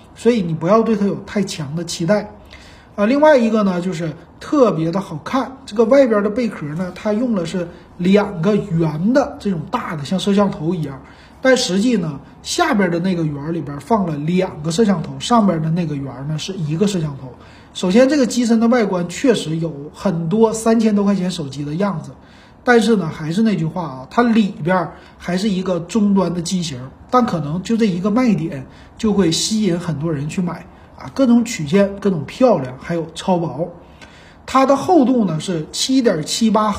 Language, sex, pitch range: Chinese, male, 170-225 Hz